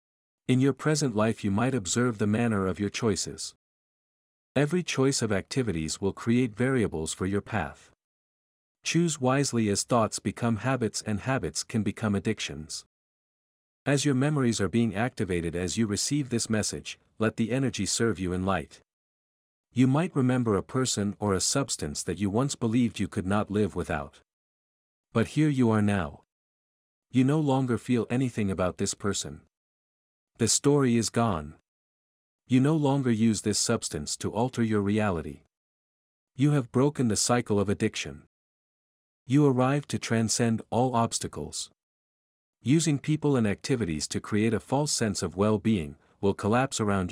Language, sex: English, male